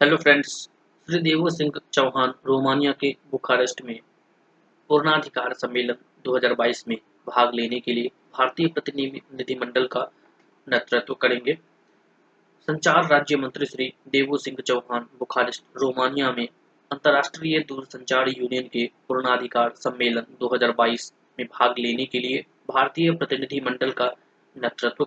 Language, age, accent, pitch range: Hindi, 20-39, native, 125-145 Hz